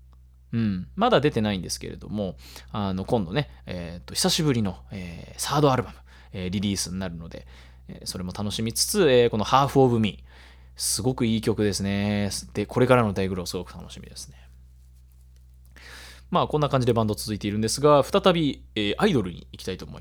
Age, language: 20-39, Japanese